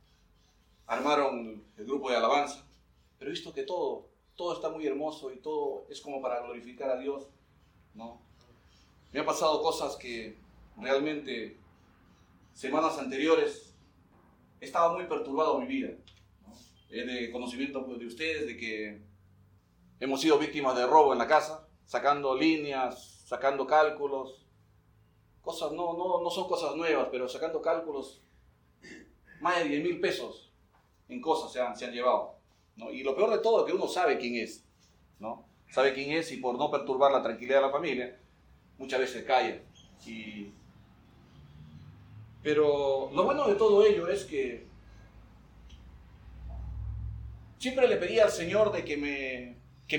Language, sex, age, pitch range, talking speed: Spanish, male, 40-59, 110-165 Hz, 150 wpm